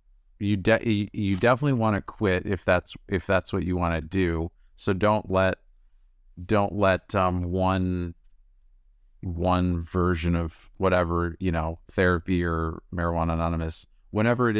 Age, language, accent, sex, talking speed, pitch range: 30-49, English, American, male, 145 wpm, 85-100 Hz